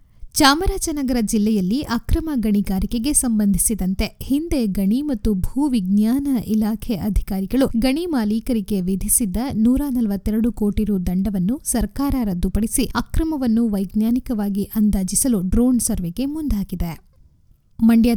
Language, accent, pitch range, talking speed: Kannada, native, 205-260 Hz, 95 wpm